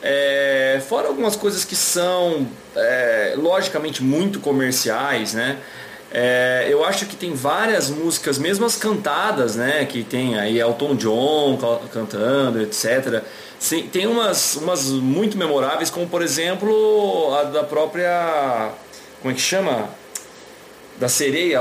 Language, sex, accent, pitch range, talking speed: English, male, Brazilian, 150-215 Hz, 130 wpm